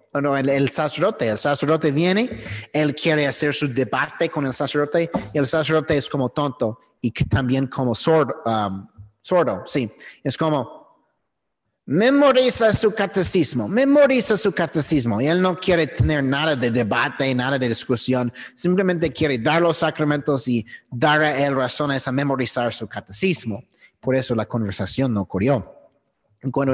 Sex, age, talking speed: male, 30-49, 150 wpm